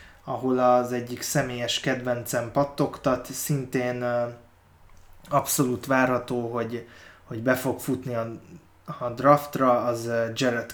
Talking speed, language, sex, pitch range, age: 105 wpm, Hungarian, male, 115-135 Hz, 20-39